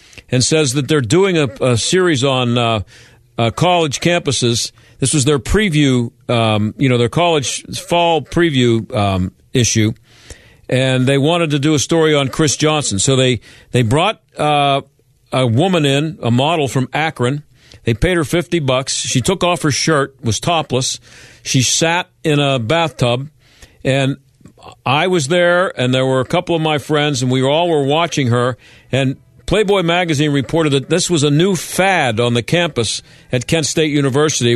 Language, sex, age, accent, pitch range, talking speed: English, male, 50-69, American, 125-165 Hz, 175 wpm